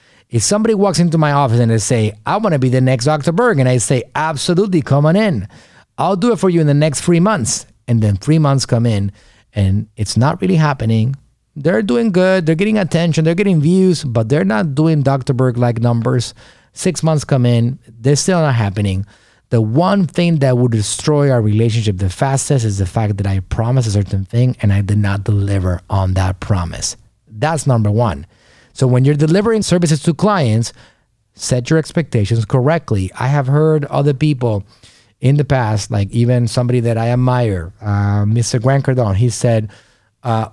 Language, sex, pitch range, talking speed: English, male, 110-160 Hz, 190 wpm